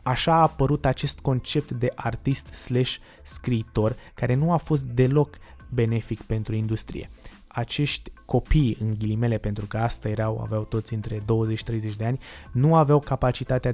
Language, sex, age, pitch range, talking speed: Romanian, male, 20-39, 110-130 Hz, 140 wpm